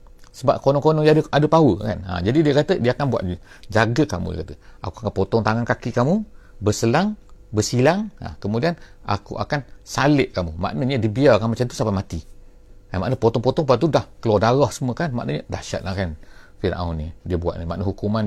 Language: English